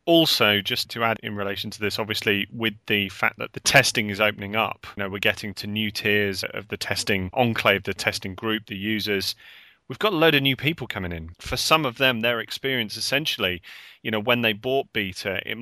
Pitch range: 105-125 Hz